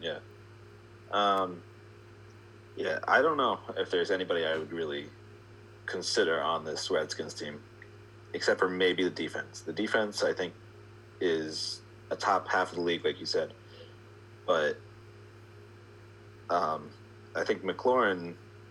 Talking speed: 130 wpm